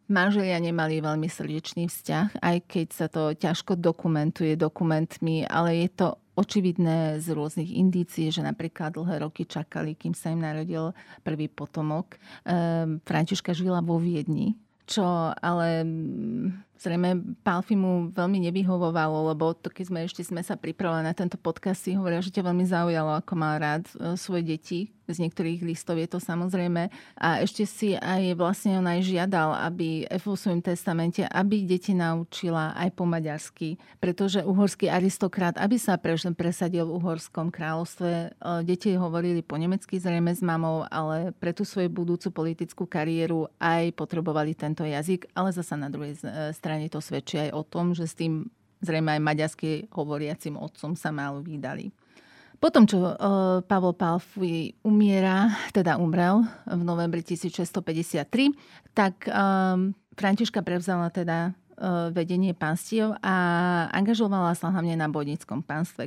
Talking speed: 145 wpm